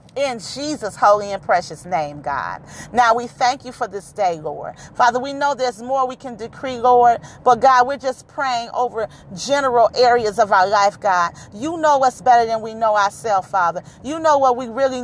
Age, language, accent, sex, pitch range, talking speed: 40-59, English, American, female, 175-240 Hz, 200 wpm